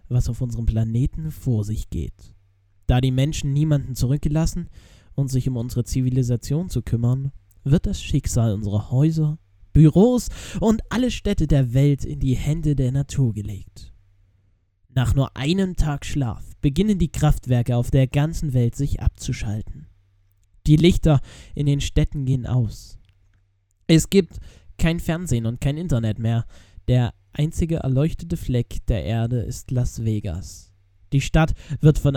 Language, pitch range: German, 100-145 Hz